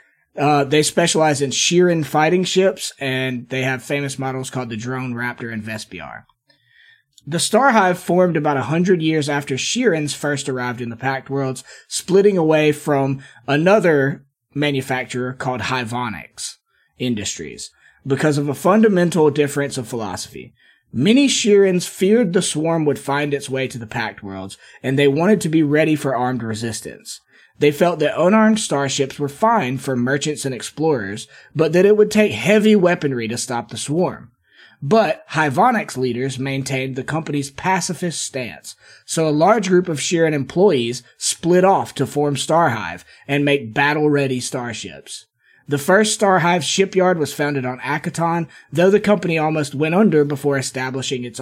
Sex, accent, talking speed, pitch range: male, American, 155 wpm, 130-175 Hz